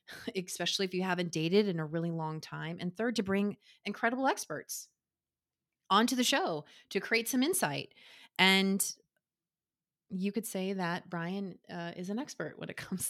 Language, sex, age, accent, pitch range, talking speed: English, female, 30-49, American, 165-210 Hz, 165 wpm